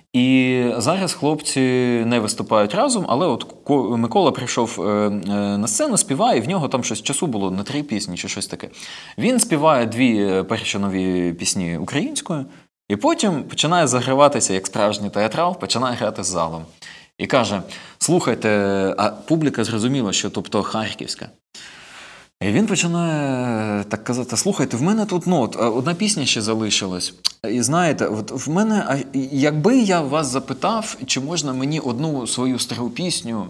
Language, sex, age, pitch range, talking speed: Ukrainian, male, 20-39, 105-150 Hz, 145 wpm